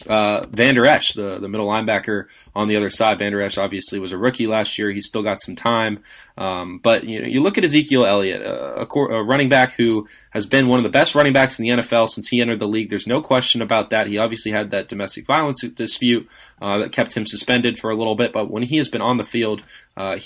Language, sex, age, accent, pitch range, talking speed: English, male, 20-39, American, 105-120 Hz, 260 wpm